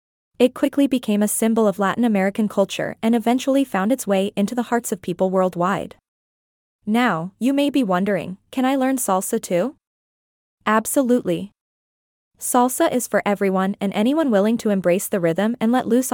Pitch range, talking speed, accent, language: 200-255 Hz, 165 wpm, American, English